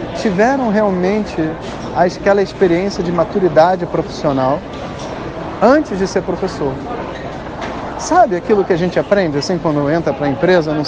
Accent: Brazilian